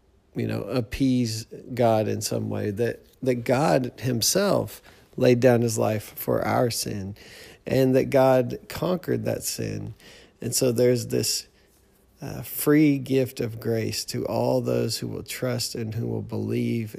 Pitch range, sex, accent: 105-125 Hz, male, American